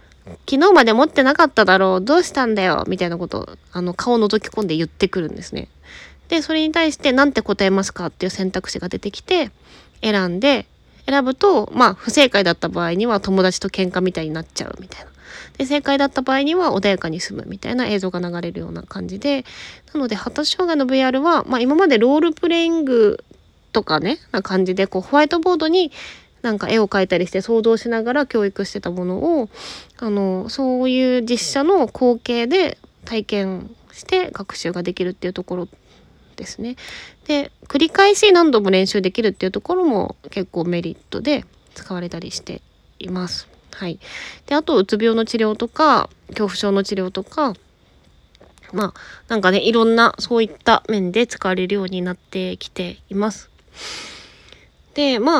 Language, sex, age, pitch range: Japanese, female, 20-39, 185-280 Hz